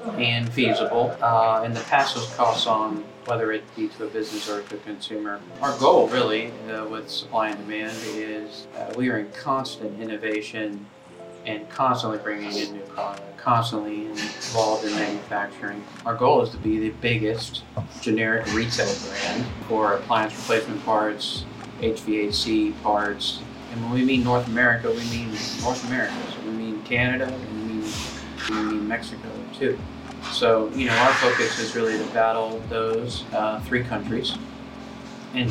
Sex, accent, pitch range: male, American, 105-115 Hz